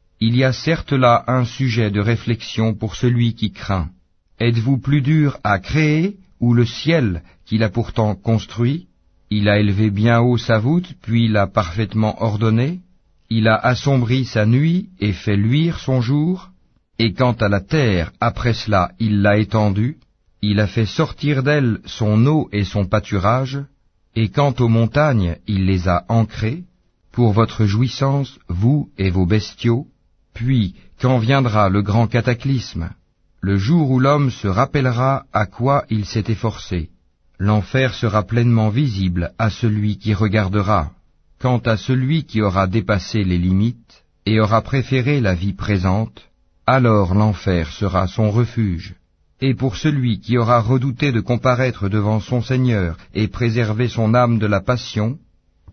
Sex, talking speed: male, 155 wpm